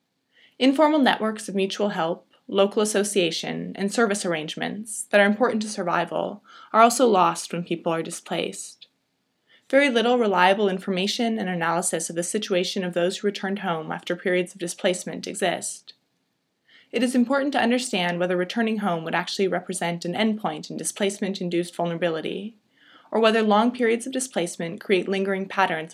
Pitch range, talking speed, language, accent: 175-220 Hz, 155 wpm, English, American